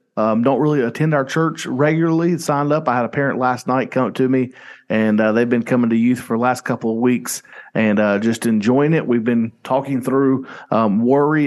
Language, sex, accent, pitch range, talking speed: English, male, American, 110-145 Hz, 225 wpm